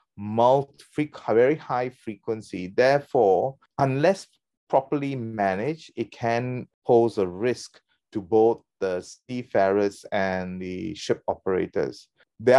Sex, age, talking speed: male, 30-49, 105 wpm